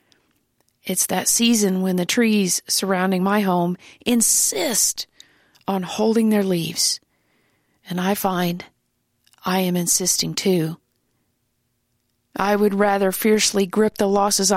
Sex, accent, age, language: female, American, 40-59, English